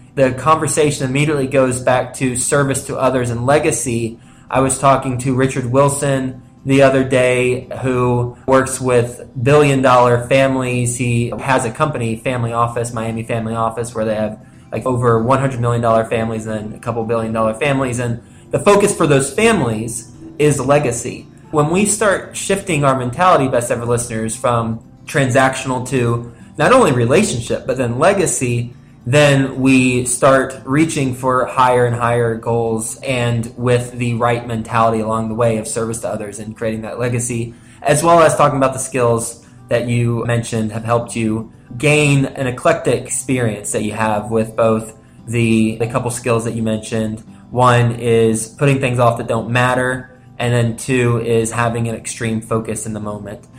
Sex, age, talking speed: male, 20-39, 165 wpm